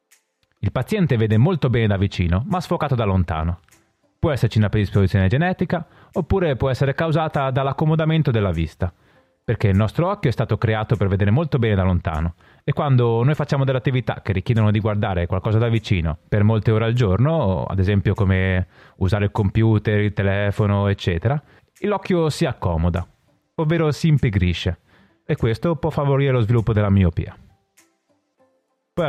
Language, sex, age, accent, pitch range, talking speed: Italian, male, 30-49, native, 100-145 Hz, 160 wpm